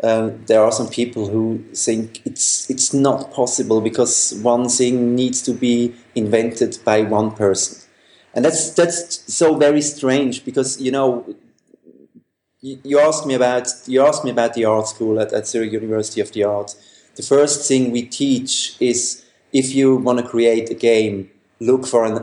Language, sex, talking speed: English, male, 175 wpm